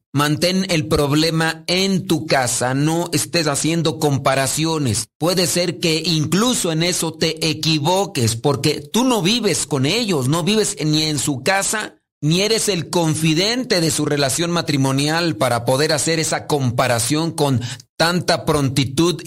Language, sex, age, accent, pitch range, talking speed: Spanish, male, 40-59, Mexican, 140-175 Hz, 145 wpm